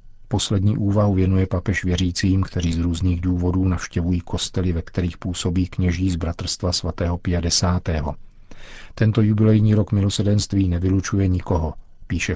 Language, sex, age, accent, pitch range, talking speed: Czech, male, 50-69, native, 90-100 Hz, 125 wpm